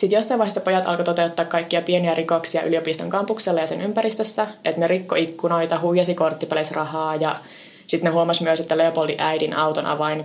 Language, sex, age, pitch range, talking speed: Finnish, female, 20-39, 155-180 Hz, 180 wpm